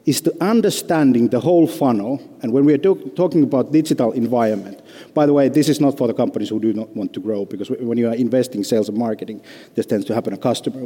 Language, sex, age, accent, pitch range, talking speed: Finnish, male, 50-69, native, 120-155 Hz, 240 wpm